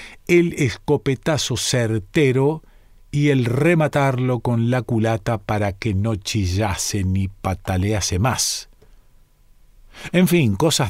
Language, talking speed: Spanish, 105 wpm